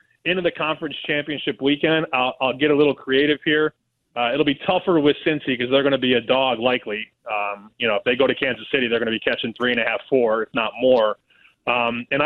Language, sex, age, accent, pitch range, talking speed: English, male, 20-39, American, 130-160 Hz, 245 wpm